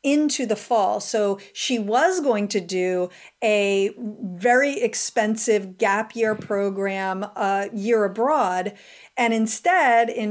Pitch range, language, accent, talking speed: 200-240 Hz, English, American, 120 wpm